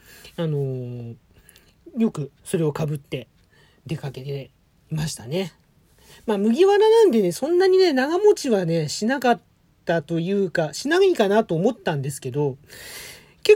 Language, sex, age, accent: Japanese, male, 40-59, native